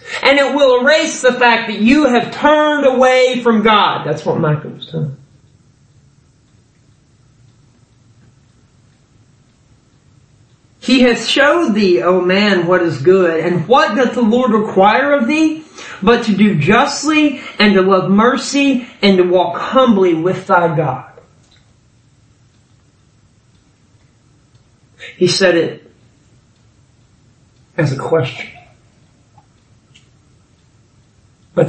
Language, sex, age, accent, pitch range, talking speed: English, male, 40-59, American, 130-190 Hz, 110 wpm